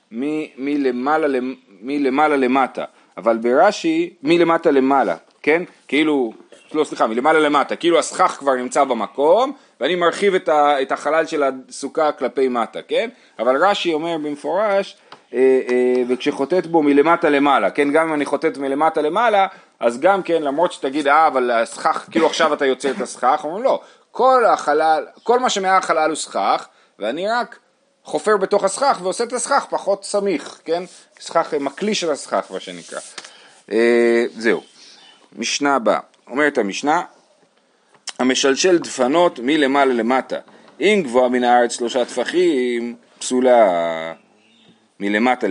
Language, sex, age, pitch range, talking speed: Hebrew, male, 30-49, 130-185 Hz, 135 wpm